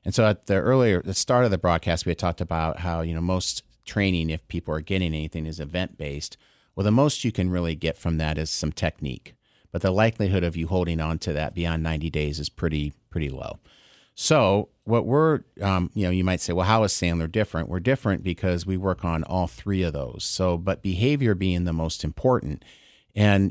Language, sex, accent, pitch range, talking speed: English, male, American, 85-110 Hz, 220 wpm